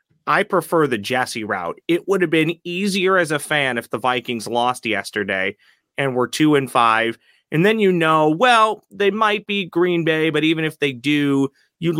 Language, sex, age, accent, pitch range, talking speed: English, male, 30-49, American, 125-165 Hz, 195 wpm